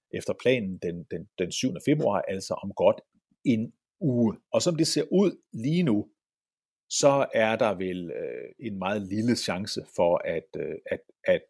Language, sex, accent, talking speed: Danish, male, native, 145 wpm